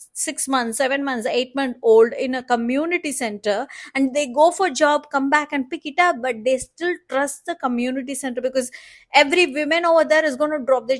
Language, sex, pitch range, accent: English, female, 240-315 Hz, Indian